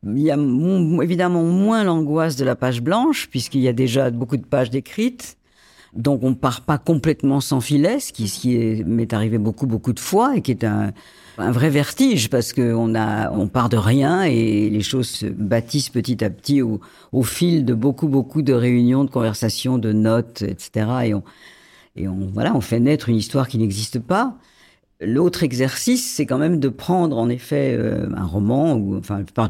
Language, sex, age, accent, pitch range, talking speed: French, female, 50-69, French, 110-150 Hz, 200 wpm